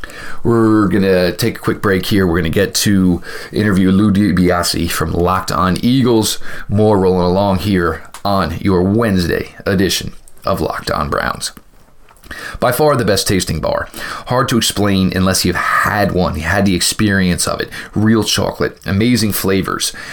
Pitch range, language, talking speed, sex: 95-115 Hz, English, 165 wpm, male